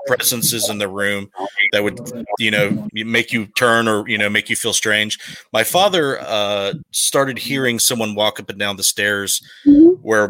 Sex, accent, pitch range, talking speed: male, American, 100-120 Hz, 180 wpm